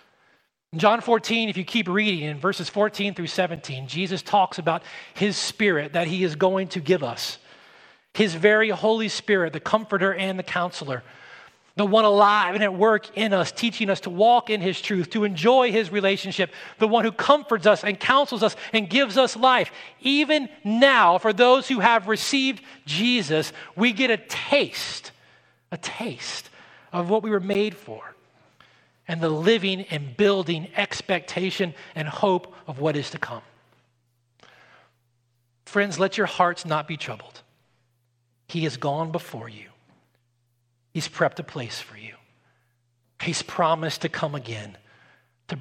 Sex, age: male, 40-59